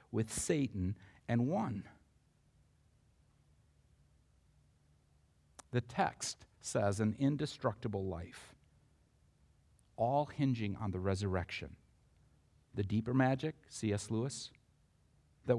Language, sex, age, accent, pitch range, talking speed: English, male, 50-69, American, 100-145 Hz, 80 wpm